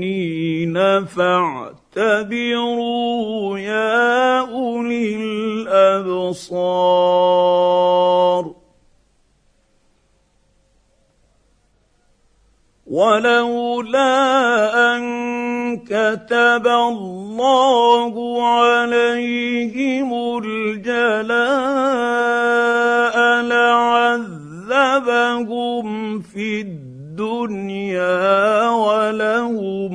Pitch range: 190-240 Hz